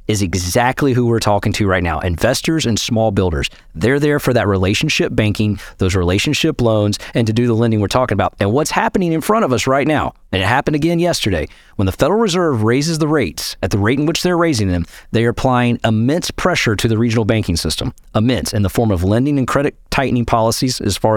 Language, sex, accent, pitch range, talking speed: English, male, American, 105-145 Hz, 225 wpm